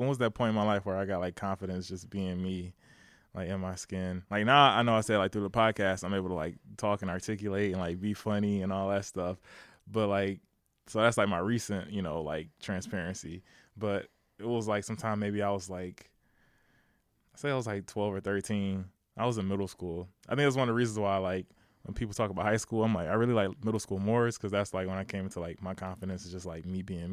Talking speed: 255 wpm